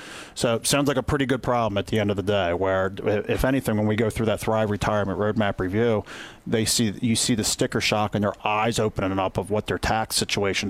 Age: 40-59